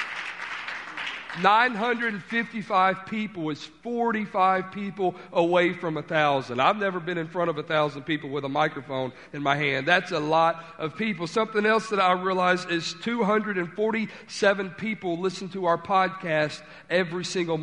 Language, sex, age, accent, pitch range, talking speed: English, male, 50-69, American, 170-200 Hz, 140 wpm